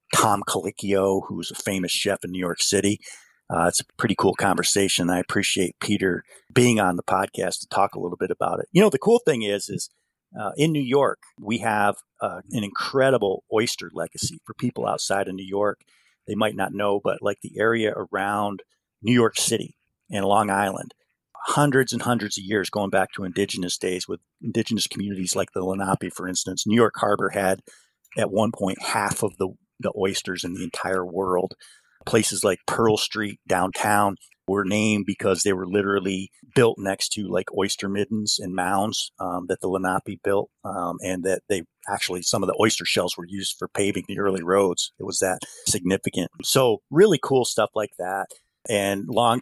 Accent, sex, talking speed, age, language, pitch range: American, male, 190 wpm, 40-59, English, 95-110 Hz